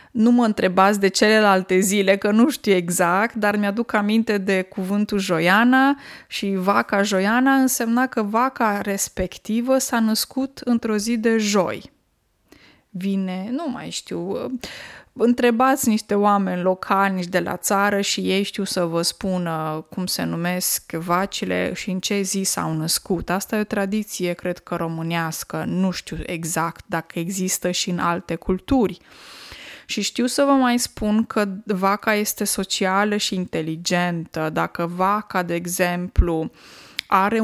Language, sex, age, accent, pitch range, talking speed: Romanian, female, 20-39, native, 180-215 Hz, 145 wpm